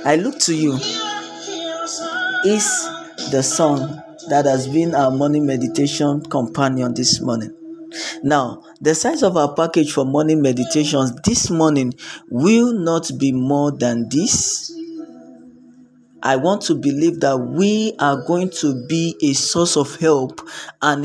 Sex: male